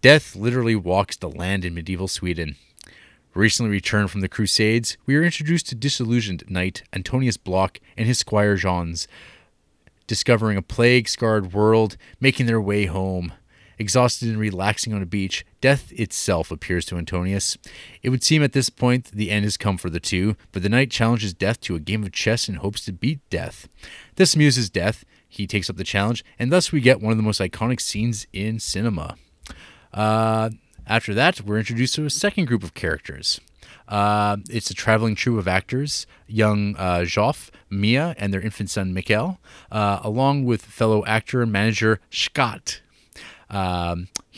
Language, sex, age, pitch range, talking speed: English, male, 30-49, 95-115 Hz, 175 wpm